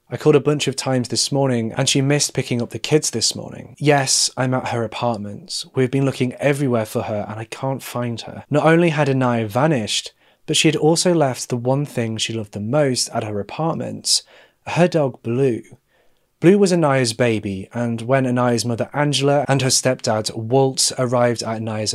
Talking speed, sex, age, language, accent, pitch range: 195 wpm, male, 30-49, English, British, 115-140 Hz